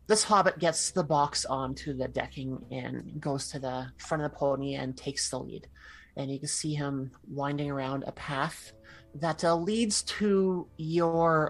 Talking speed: 175 wpm